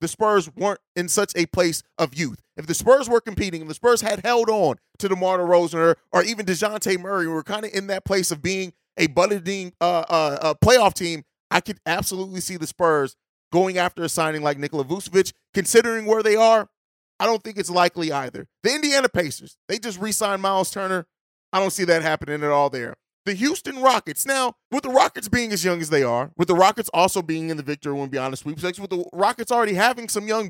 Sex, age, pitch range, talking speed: male, 30-49, 170-225 Hz, 220 wpm